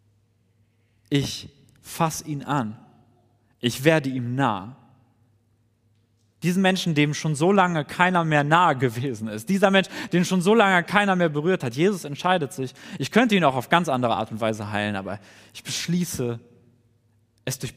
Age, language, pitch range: 30-49, German, 120-185 Hz